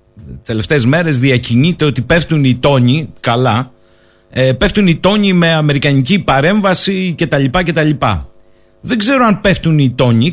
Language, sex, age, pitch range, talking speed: Greek, male, 50-69, 120-165 Hz, 150 wpm